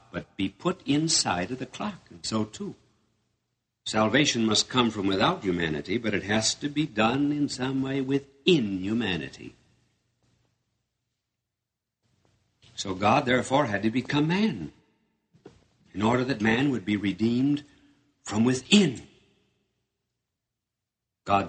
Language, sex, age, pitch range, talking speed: English, male, 60-79, 95-125 Hz, 125 wpm